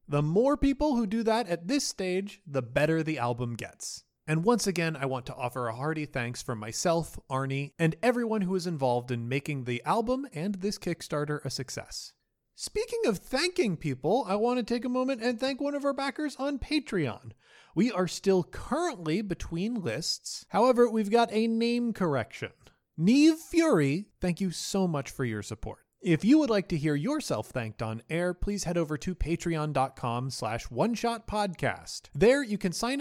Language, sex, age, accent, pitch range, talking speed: English, male, 30-49, American, 135-225 Hz, 185 wpm